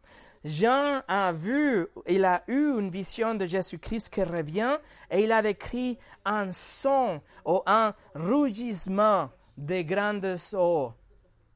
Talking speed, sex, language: 125 wpm, male, French